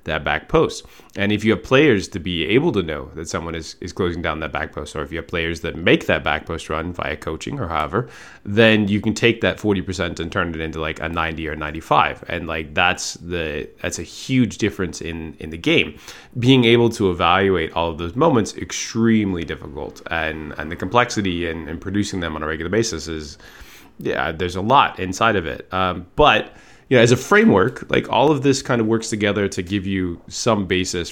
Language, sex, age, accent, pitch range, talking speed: English, male, 20-39, American, 80-110 Hz, 220 wpm